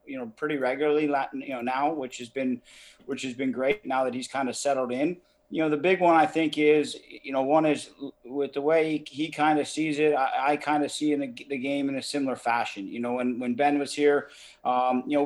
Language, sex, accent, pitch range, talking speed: English, male, American, 125-145 Hz, 260 wpm